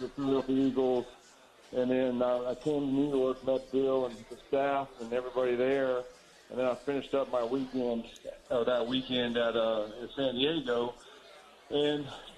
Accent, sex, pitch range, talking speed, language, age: American, male, 120-140 Hz, 170 wpm, English, 40-59